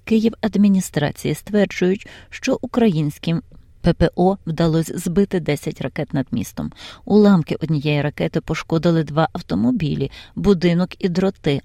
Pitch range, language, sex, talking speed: 150-195 Hz, Ukrainian, female, 105 wpm